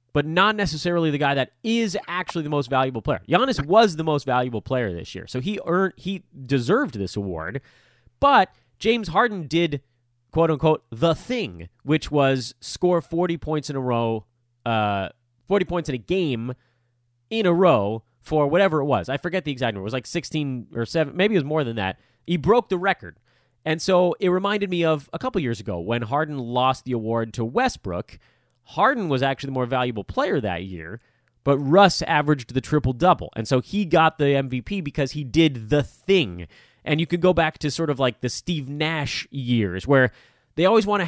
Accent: American